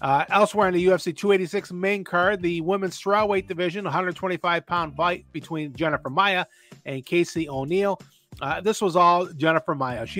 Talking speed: 160 wpm